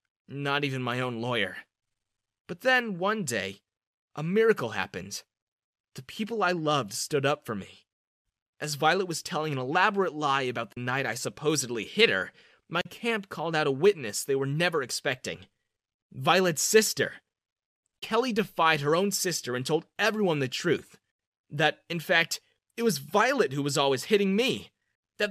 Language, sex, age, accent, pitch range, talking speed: English, male, 30-49, American, 130-205 Hz, 160 wpm